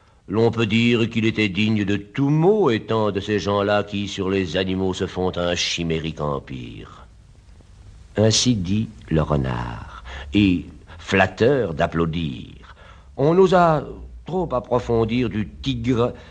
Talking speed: 130 wpm